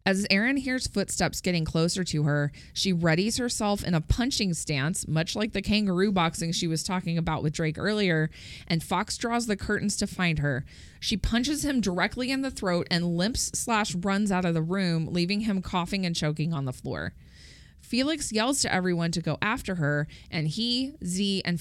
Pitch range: 160-210 Hz